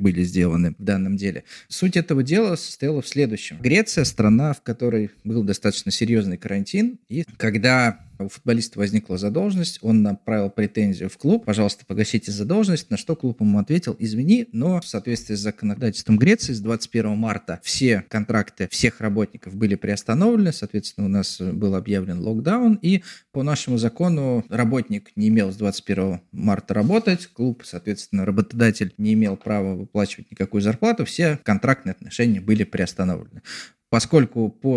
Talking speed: 150 wpm